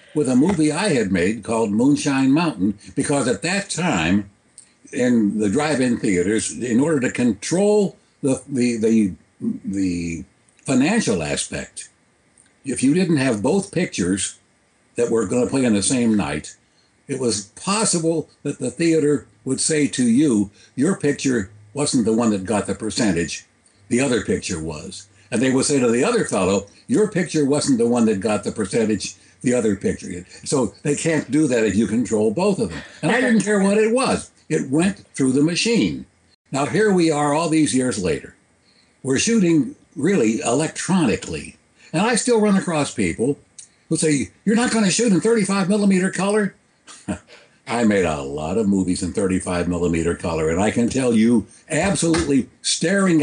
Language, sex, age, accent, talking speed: English, male, 60-79, American, 170 wpm